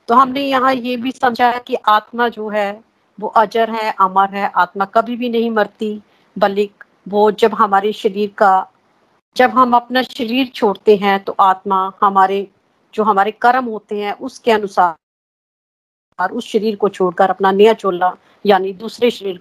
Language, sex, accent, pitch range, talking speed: Hindi, female, native, 205-240 Hz, 135 wpm